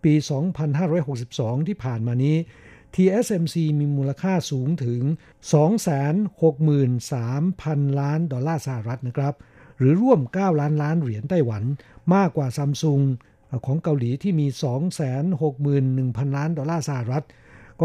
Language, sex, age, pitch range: Thai, male, 60-79, 130-165 Hz